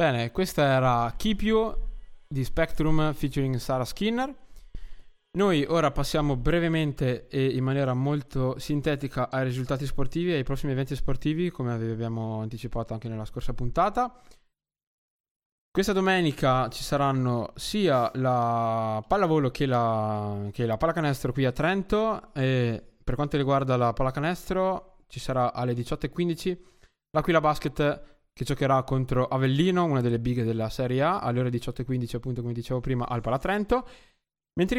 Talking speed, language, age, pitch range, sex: 140 wpm, Italian, 20-39, 125-155 Hz, male